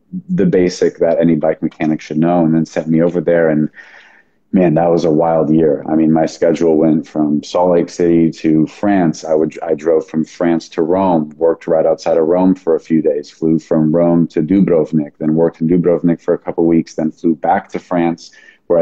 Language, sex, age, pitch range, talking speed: English, male, 30-49, 80-90 Hz, 220 wpm